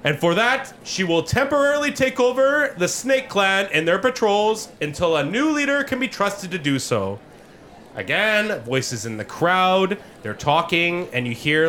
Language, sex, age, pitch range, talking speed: English, male, 30-49, 120-190 Hz, 175 wpm